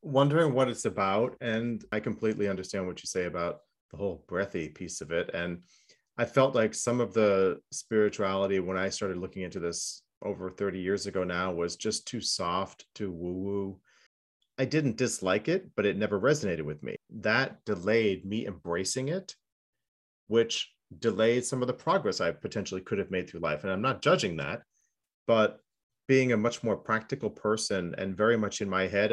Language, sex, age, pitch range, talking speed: English, male, 30-49, 95-120 Hz, 185 wpm